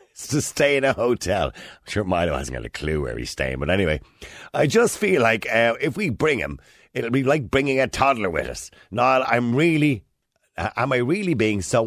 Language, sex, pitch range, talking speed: English, male, 110-145 Hz, 215 wpm